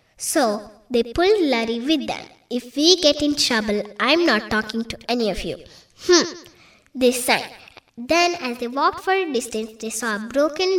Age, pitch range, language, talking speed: 20-39, 220-315 Hz, Kannada, 185 wpm